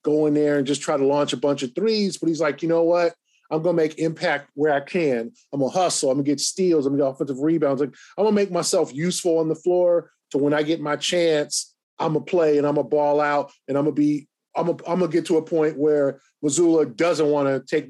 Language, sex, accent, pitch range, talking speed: English, male, American, 145-180 Hz, 260 wpm